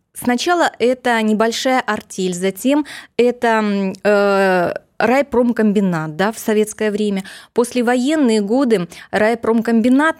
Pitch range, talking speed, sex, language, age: 210-255 Hz, 80 wpm, female, Russian, 20-39